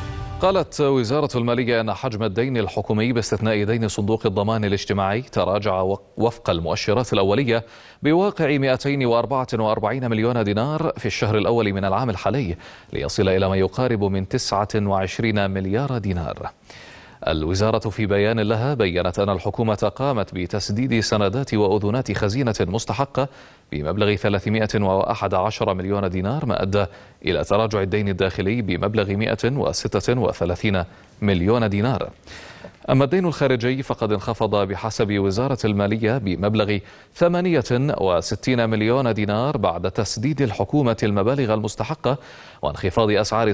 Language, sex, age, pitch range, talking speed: Arabic, male, 30-49, 100-125 Hz, 110 wpm